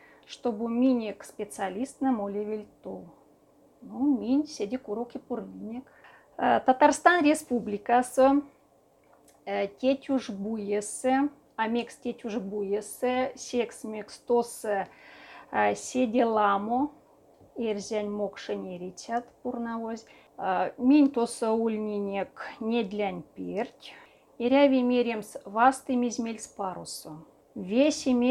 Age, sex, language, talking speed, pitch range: 30-49, female, Russian, 85 wpm, 210-255 Hz